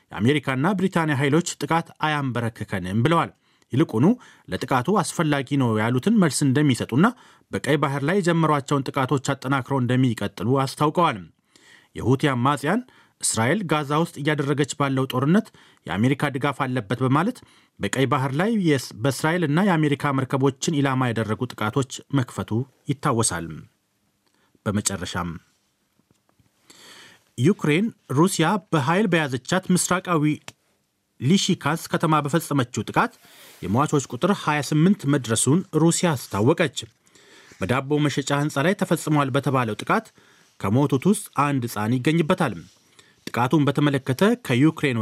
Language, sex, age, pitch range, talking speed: Amharic, male, 30-49, 130-165 Hz, 100 wpm